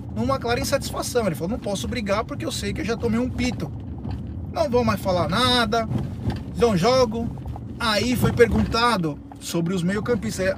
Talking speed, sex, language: 170 wpm, male, Portuguese